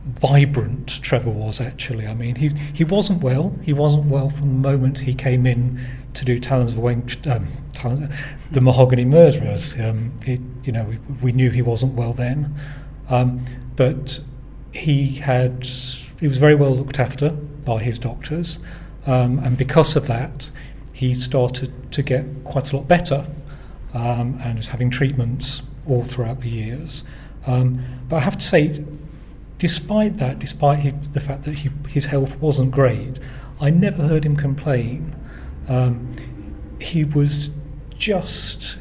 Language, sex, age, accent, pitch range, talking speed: English, male, 40-59, British, 125-145 Hz, 160 wpm